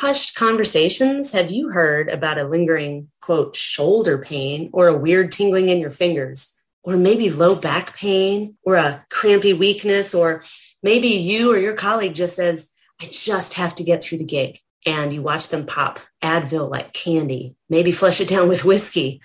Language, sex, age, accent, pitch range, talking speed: English, female, 30-49, American, 165-210 Hz, 180 wpm